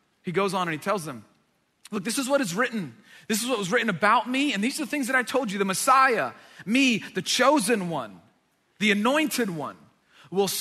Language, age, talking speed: English, 30-49, 220 wpm